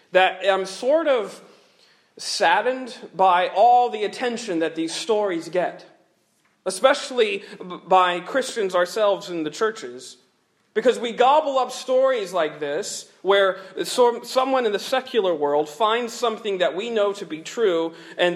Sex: male